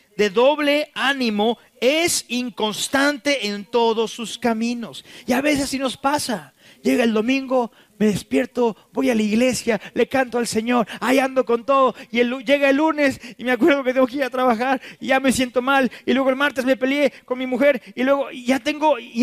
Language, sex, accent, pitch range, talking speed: Spanish, male, Mexican, 215-265 Hz, 205 wpm